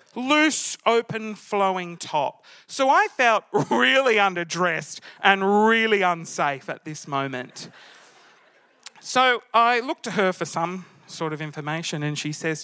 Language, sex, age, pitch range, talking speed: English, male, 30-49, 155-210 Hz, 135 wpm